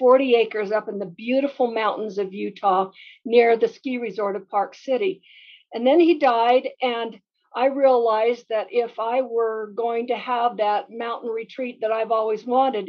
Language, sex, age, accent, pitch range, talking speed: English, female, 50-69, American, 215-260 Hz, 170 wpm